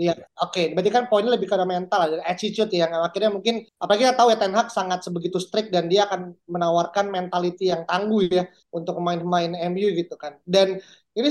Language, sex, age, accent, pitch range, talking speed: Indonesian, male, 20-39, native, 180-220 Hz, 195 wpm